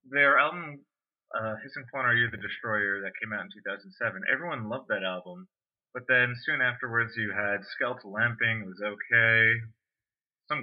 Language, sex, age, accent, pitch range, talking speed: English, male, 20-39, American, 95-120 Hz, 180 wpm